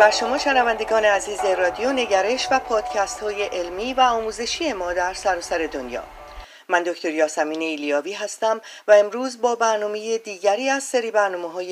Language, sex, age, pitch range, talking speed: Persian, female, 40-59, 185-245 Hz, 150 wpm